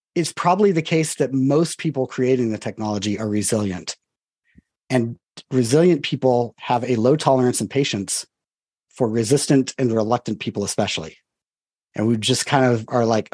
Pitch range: 120-160 Hz